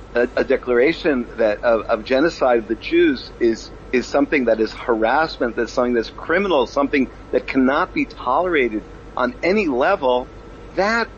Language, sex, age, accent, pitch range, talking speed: English, male, 50-69, American, 135-195 Hz, 155 wpm